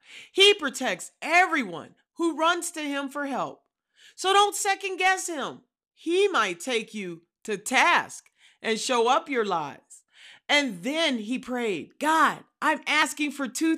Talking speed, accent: 150 wpm, American